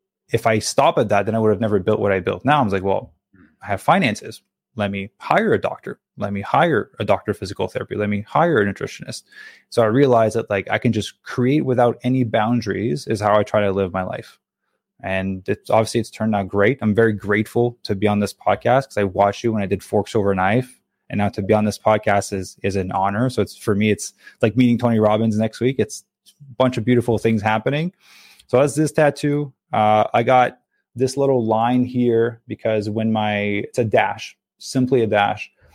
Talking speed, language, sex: 225 wpm, English, male